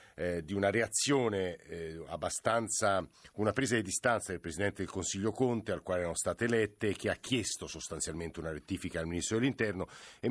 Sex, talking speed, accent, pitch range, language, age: male, 185 wpm, native, 95-115 Hz, Italian, 50-69